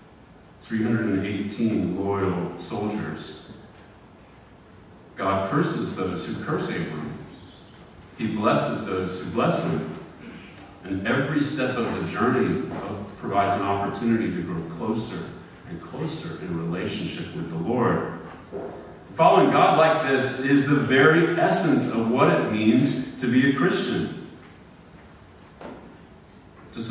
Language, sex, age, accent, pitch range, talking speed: English, male, 40-59, American, 100-125 Hz, 115 wpm